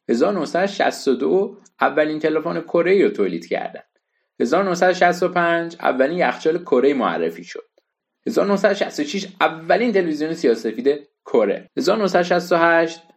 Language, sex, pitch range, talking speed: Persian, male, 140-205 Hz, 85 wpm